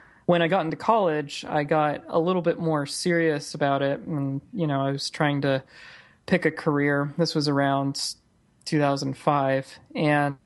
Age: 20-39